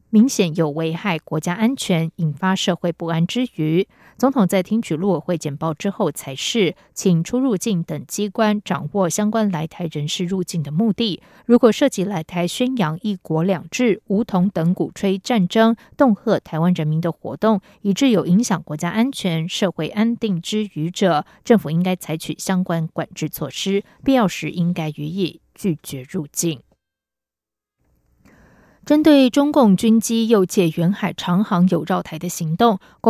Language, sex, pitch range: German, female, 170-220 Hz